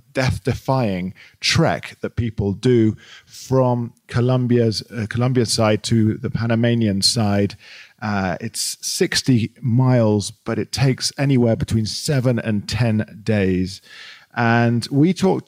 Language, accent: English, British